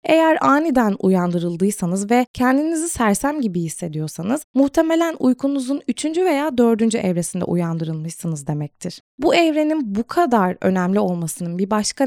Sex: female